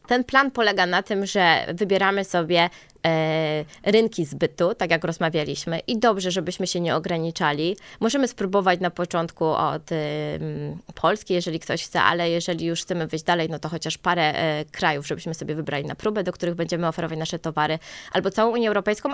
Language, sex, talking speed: Polish, female, 170 wpm